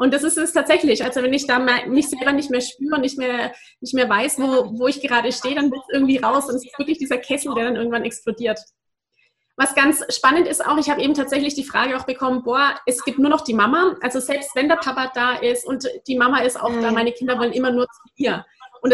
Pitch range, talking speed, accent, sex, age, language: 245-285 Hz, 255 wpm, German, female, 30-49, German